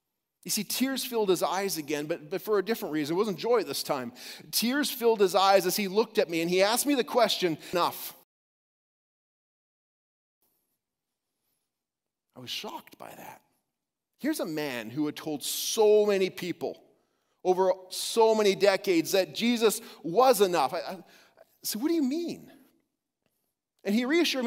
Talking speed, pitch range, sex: 165 wpm, 155-240 Hz, male